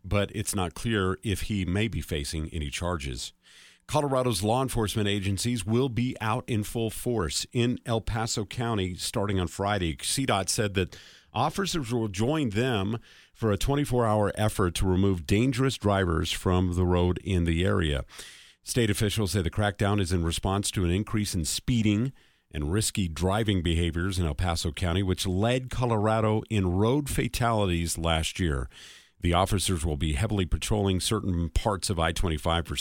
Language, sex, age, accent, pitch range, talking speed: English, male, 50-69, American, 90-115 Hz, 165 wpm